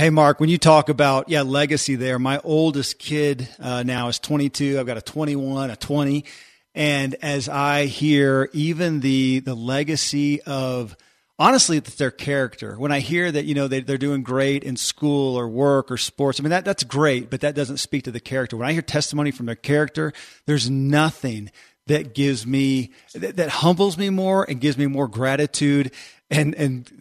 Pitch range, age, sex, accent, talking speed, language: 135-160 Hz, 40-59, male, American, 195 wpm, English